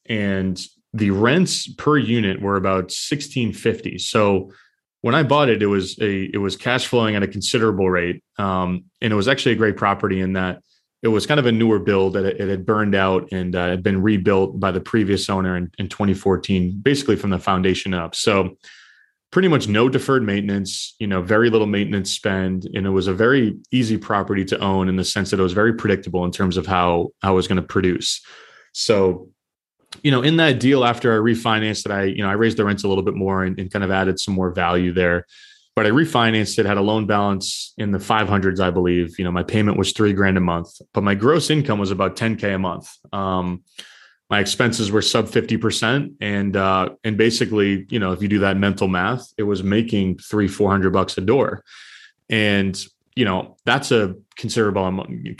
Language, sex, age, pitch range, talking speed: English, male, 20-39, 95-110 Hz, 215 wpm